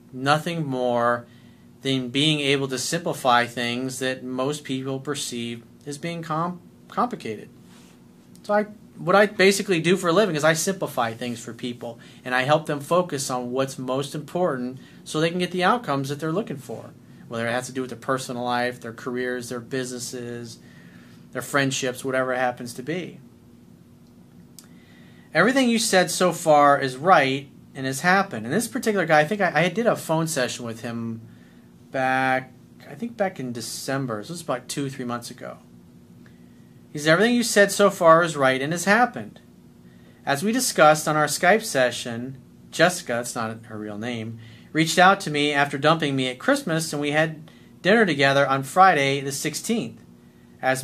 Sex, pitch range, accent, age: male, 125-165 Hz, American, 40-59